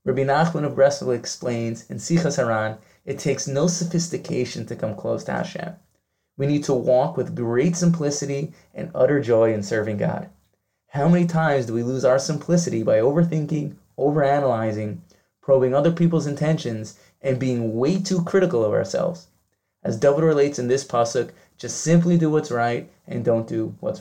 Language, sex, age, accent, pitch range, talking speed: English, male, 20-39, American, 120-150 Hz, 165 wpm